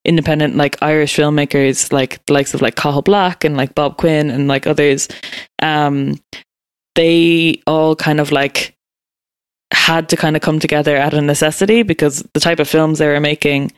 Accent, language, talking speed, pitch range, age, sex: Irish, English, 180 wpm, 145-160 Hz, 10-29, female